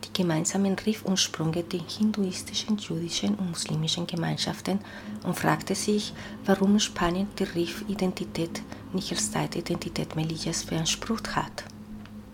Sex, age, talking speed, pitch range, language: female, 40-59, 105 wpm, 140-190 Hz, German